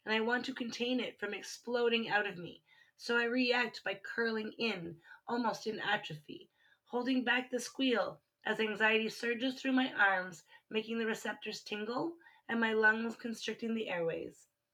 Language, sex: English, female